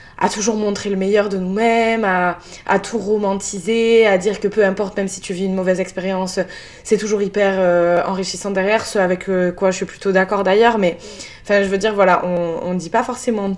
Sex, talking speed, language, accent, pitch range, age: female, 210 wpm, French, French, 180-205 Hz, 20-39